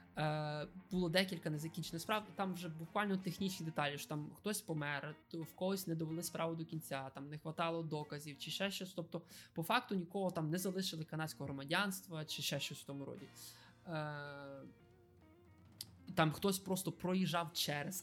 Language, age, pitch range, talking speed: Ukrainian, 20-39, 150-190 Hz, 165 wpm